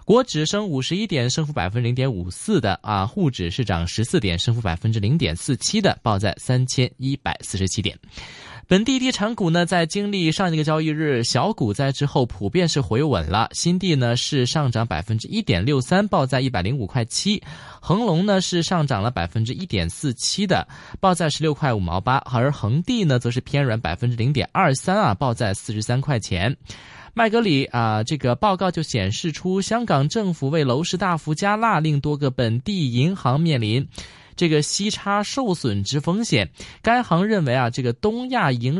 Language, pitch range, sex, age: Chinese, 120-175 Hz, male, 20-39